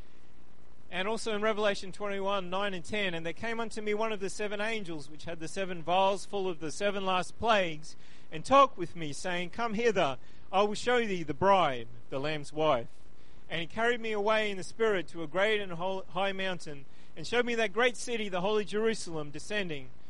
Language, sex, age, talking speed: English, male, 40-59, 205 wpm